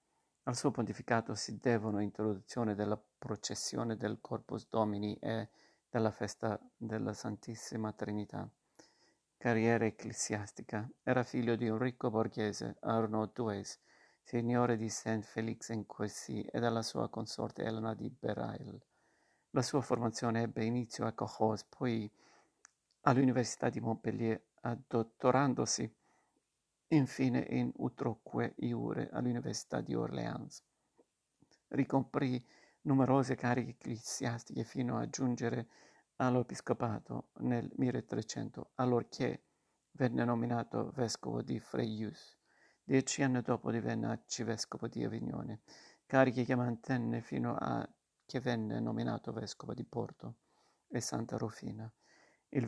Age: 50-69